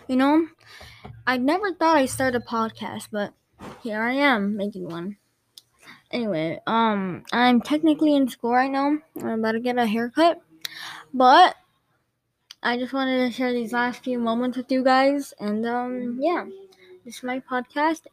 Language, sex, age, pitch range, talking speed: English, female, 10-29, 200-265 Hz, 160 wpm